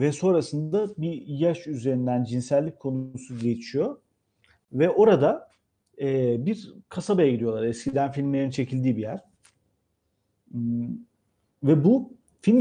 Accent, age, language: native, 40-59, Turkish